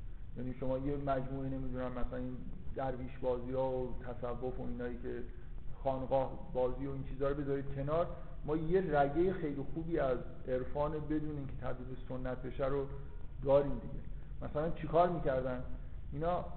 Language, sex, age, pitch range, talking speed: Persian, male, 50-69, 130-155 Hz, 150 wpm